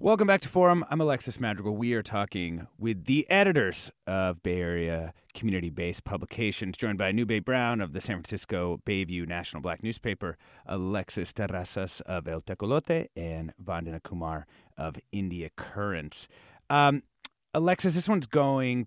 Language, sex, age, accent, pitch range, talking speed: English, male, 30-49, American, 90-140 Hz, 145 wpm